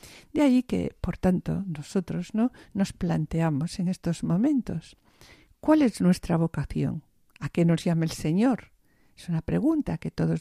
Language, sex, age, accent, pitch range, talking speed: Spanish, female, 50-69, Spanish, 165-235 Hz, 155 wpm